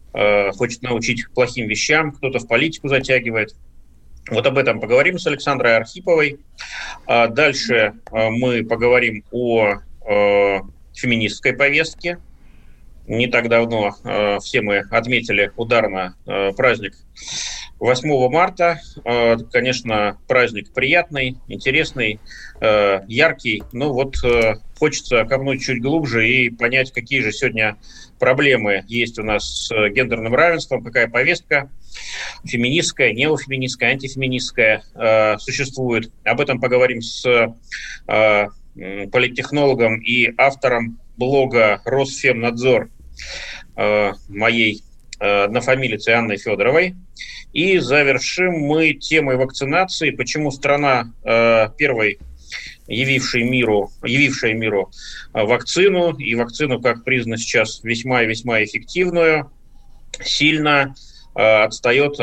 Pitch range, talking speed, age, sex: 110-135 Hz, 90 wpm, 30-49, male